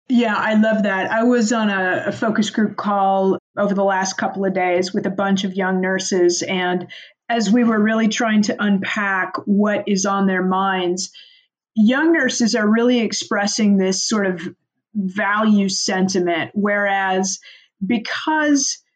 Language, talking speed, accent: English, 155 wpm, American